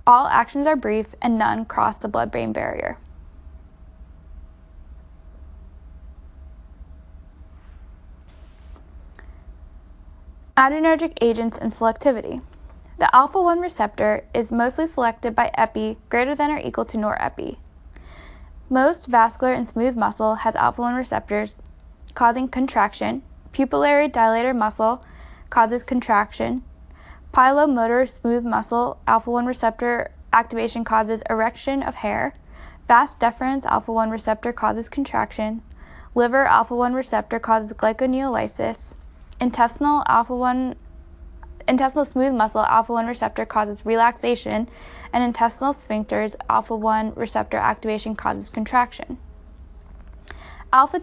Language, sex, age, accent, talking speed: English, female, 10-29, American, 110 wpm